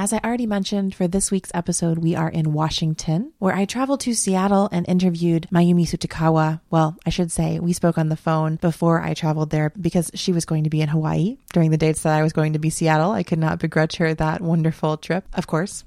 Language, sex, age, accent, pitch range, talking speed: English, female, 30-49, American, 155-180 Hz, 240 wpm